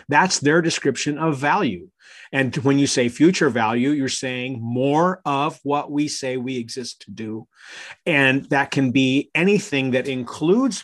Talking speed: 160 wpm